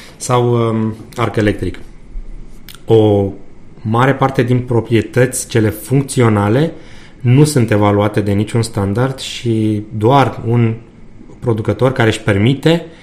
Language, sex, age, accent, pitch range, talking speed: Romanian, male, 30-49, native, 105-120 Hz, 105 wpm